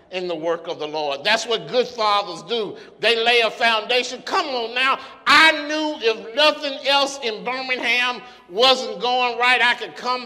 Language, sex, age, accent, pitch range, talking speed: English, male, 50-69, American, 245-305 Hz, 180 wpm